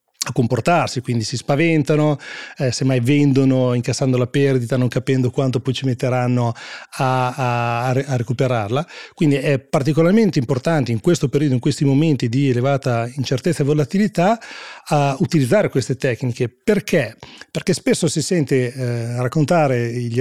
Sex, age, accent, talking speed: male, 30-49, native, 135 wpm